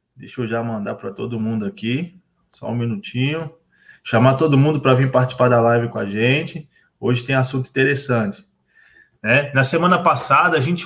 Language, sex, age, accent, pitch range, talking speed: Portuguese, male, 20-39, Brazilian, 125-165 Hz, 175 wpm